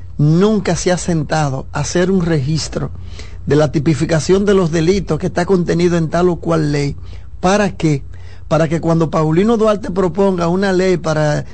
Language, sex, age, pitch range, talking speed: Spanish, male, 50-69, 155-190 Hz, 170 wpm